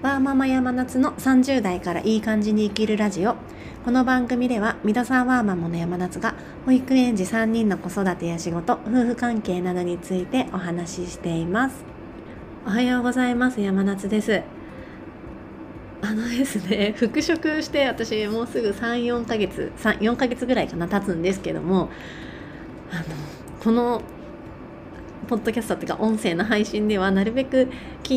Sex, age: female, 30-49